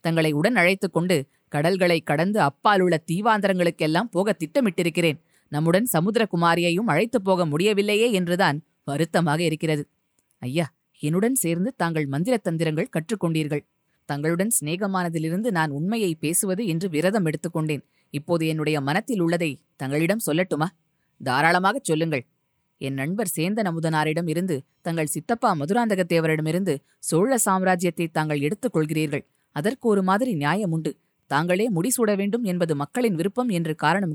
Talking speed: 115 wpm